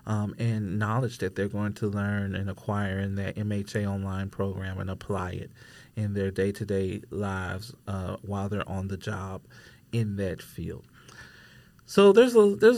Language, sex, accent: English, male, American